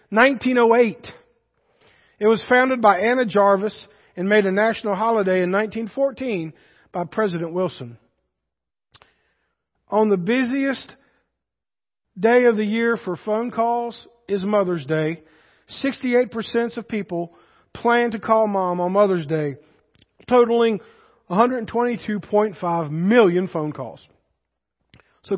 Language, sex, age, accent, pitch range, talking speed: English, male, 40-59, American, 185-235 Hz, 110 wpm